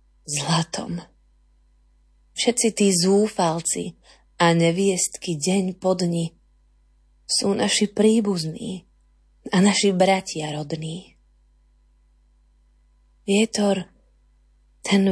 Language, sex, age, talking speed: Slovak, female, 20-39, 70 wpm